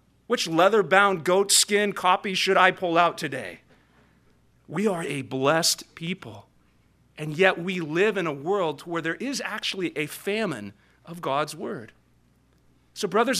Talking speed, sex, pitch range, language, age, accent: 145 wpm, male, 130-185 Hz, English, 40-59, American